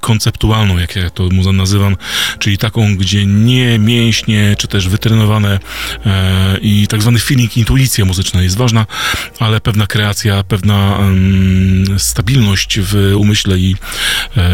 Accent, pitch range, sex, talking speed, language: native, 95-115 Hz, male, 125 wpm, Polish